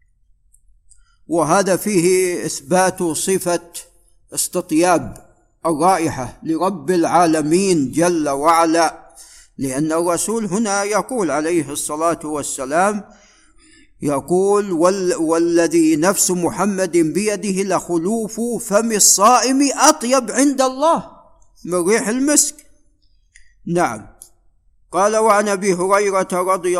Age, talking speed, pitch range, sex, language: 50-69, 85 wpm, 165-200 Hz, male, Arabic